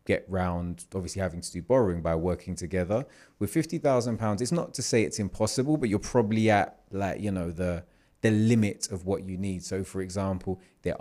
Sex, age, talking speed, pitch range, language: male, 30-49, 205 wpm, 90-105 Hz, English